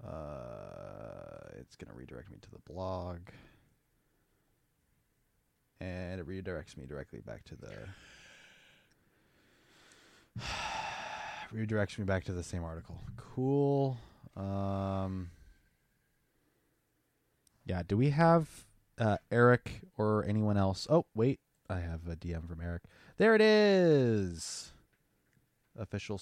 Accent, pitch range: American, 90-115 Hz